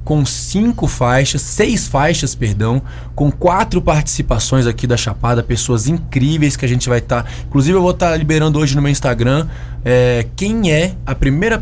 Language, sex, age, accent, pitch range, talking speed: Portuguese, male, 20-39, Brazilian, 120-170 Hz, 165 wpm